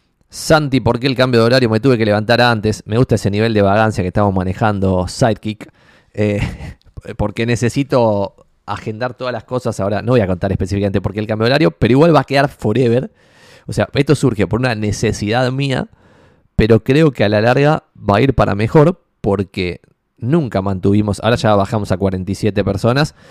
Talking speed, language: 195 wpm, Spanish